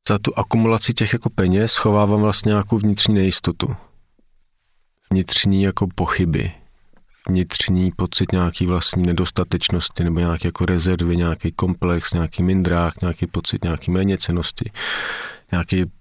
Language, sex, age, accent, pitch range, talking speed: Czech, male, 40-59, native, 90-110 Hz, 120 wpm